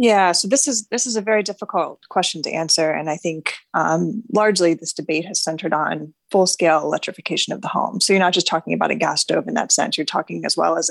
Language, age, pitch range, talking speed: English, 20-39, 165-205 Hz, 240 wpm